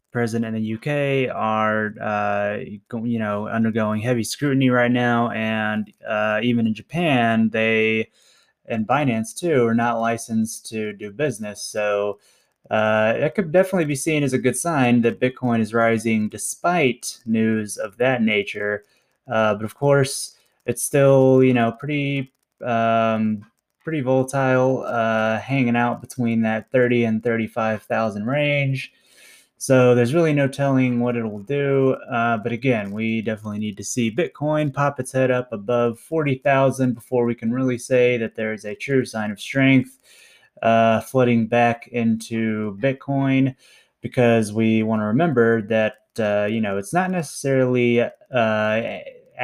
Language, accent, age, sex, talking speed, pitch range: English, American, 20-39, male, 150 wpm, 110-130 Hz